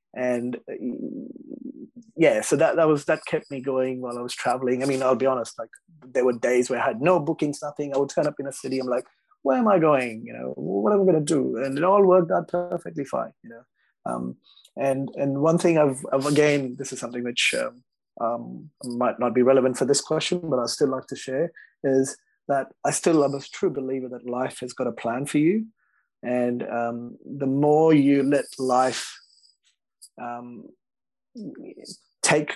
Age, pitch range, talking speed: 30-49, 125-150 Hz, 205 wpm